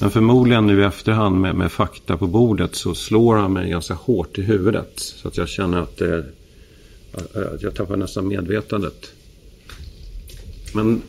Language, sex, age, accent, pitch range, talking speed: Swedish, male, 50-69, native, 90-110 Hz, 160 wpm